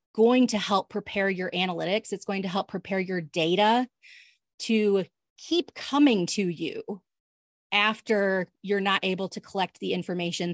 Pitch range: 185-220 Hz